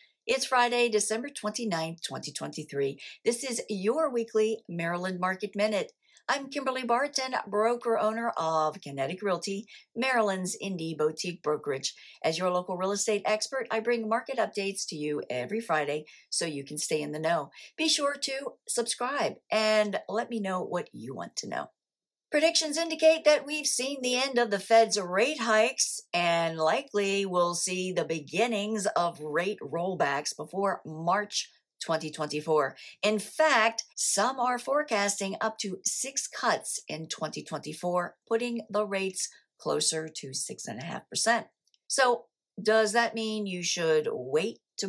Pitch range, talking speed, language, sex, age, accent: 175-240 Hz, 150 wpm, English, female, 50-69, American